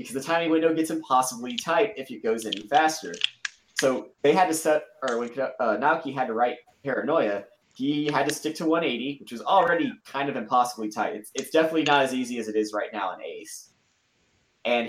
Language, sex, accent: English, male, American